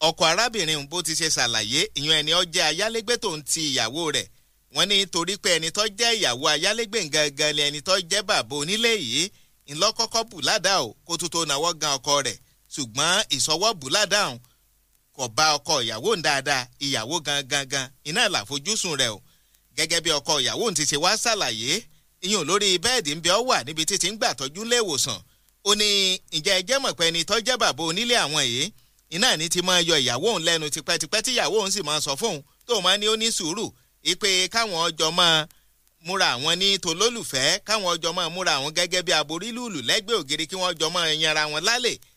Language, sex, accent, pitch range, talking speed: English, male, Nigerian, 150-205 Hz, 175 wpm